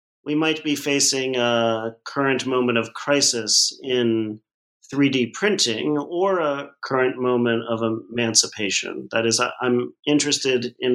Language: English